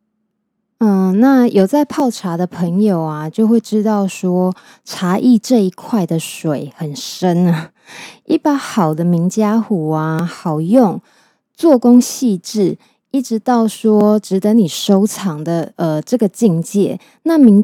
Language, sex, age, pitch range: Chinese, female, 20-39, 175-235 Hz